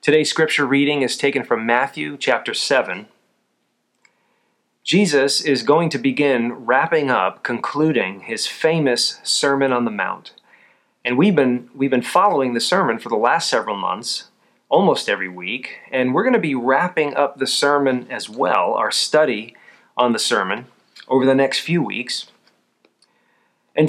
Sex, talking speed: male, 150 wpm